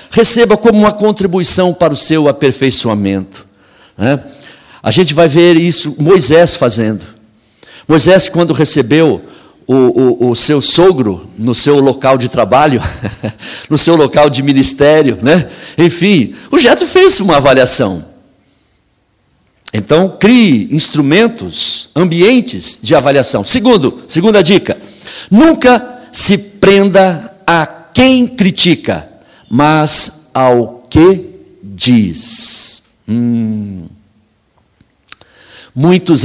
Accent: Brazilian